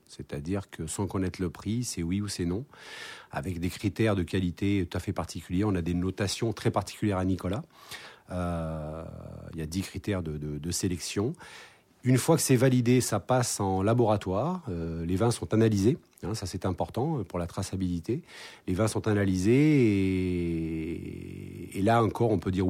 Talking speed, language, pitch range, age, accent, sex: 185 wpm, French, 90-115 Hz, 40-59, French, male